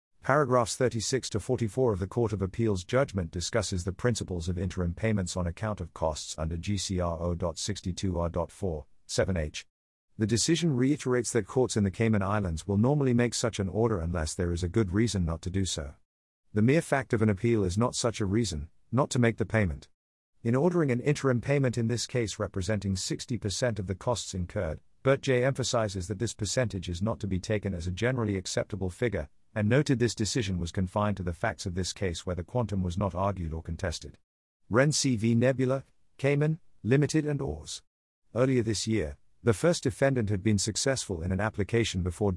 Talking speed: 195 wpm